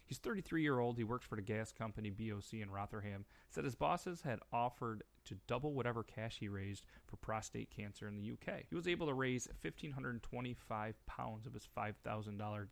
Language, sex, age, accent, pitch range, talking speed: English, male, 30-49, American, 100-120 Hz, 180 wpm